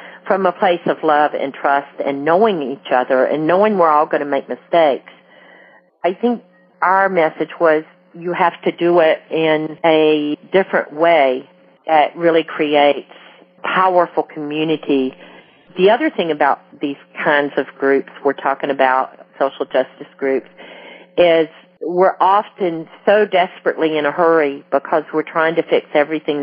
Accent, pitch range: American, 145-175 Hz